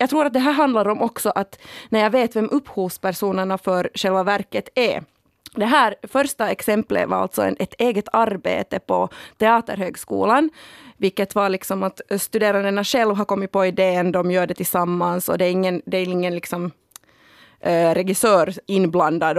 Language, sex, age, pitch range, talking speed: Swedish, female, 30-49, 185-230 Hz, 165 wpm